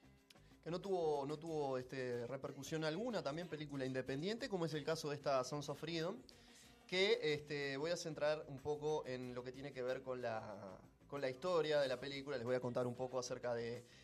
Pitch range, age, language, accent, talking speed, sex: 120-155 Hz, 20-39, Spanish, Argentinian, 205 wpm, male